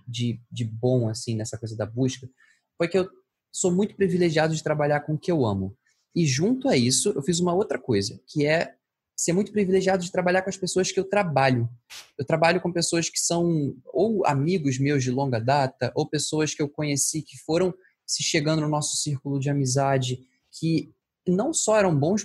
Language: Portuguese